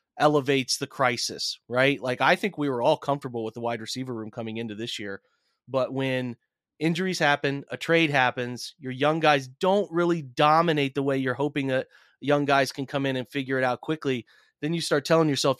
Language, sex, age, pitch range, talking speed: English, male, 30-49, 130-160 Hz, 205 wpm